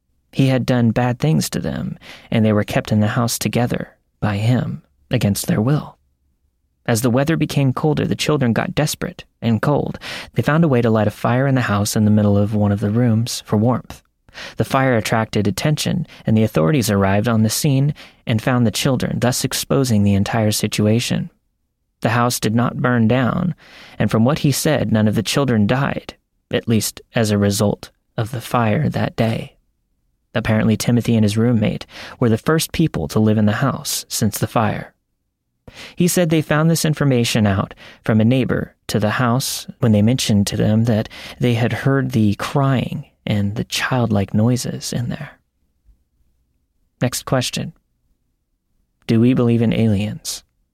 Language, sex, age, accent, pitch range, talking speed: English, male, 30-49, American, 105-135 Hz, 180 wpm